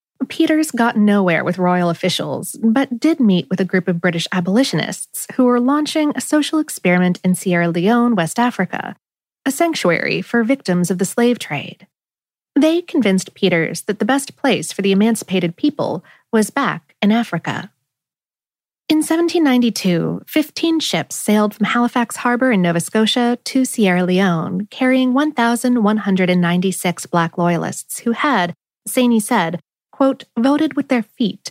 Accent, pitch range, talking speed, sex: American, 180-260 Hz, 145 wpm, female